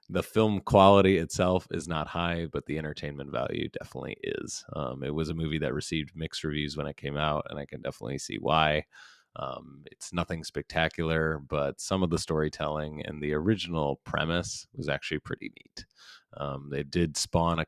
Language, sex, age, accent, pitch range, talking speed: English, male, 30-49, American, 75-85 Hz, 185 wpm